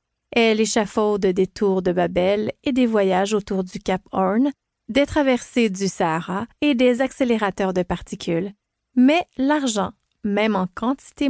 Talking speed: 145 wpm